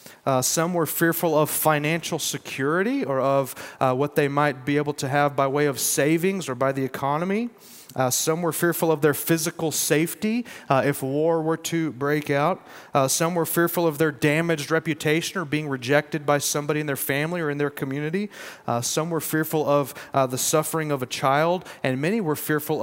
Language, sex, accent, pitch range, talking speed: English, male, American, 130-165 Hz, 195 wpm